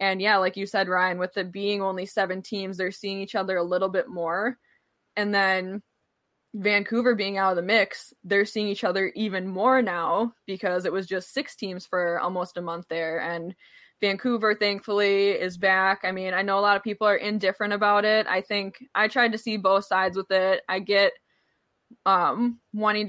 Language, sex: English, female